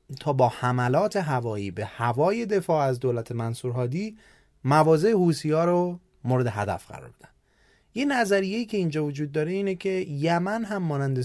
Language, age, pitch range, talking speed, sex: Persian, 30-49, 120-170 Hz, 150 wpm, male